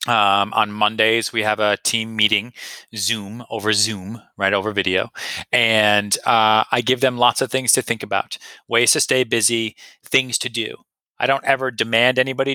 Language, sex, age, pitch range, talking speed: French, male, 30-49, 105-130 Hz, 175 wpm